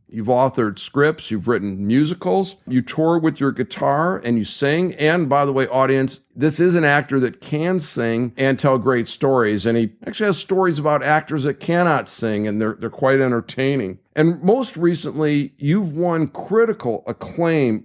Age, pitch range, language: 50-69, 110-145 Hz, English